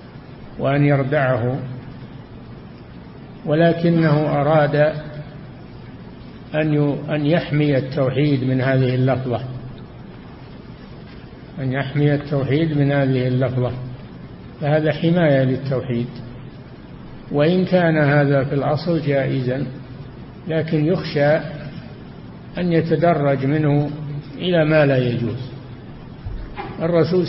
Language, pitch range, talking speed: Arabic, 130-160 Hz, 75 wpm